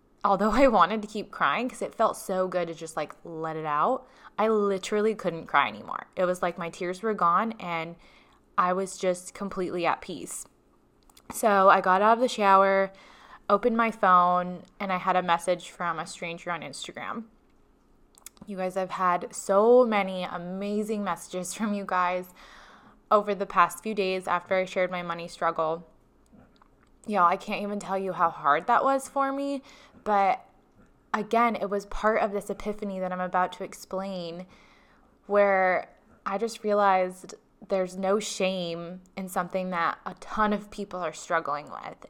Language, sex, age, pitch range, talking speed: English, female, 20-39, 180-210 Hz, 170 wpm